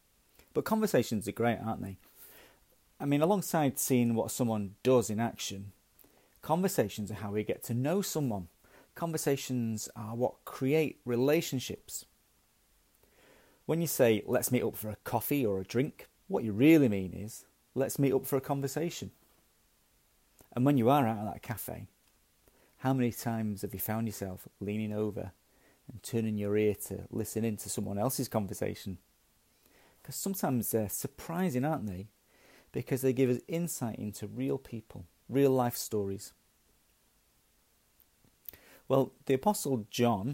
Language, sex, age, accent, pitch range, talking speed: English, male, 40-59, British, 105-135 Hz, 145 wpm